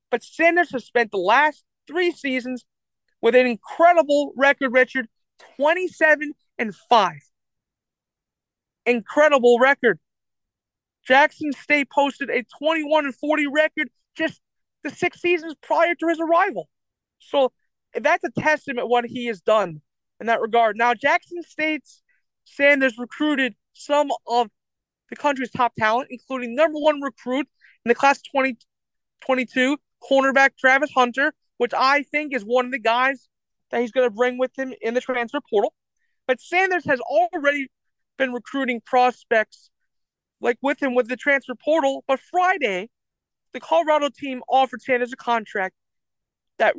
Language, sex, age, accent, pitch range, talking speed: English, male, 40-59, American, 240-300 Hz, 145 wpm